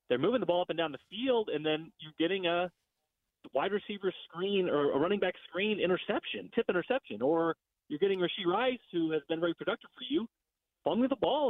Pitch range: 155-215 Hz